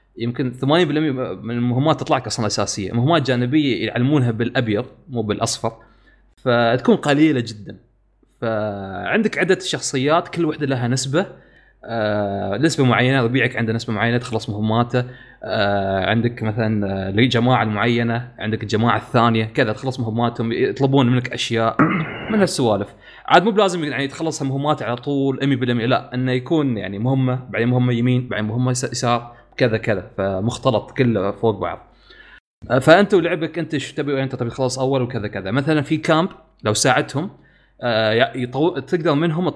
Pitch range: 115-145 Hz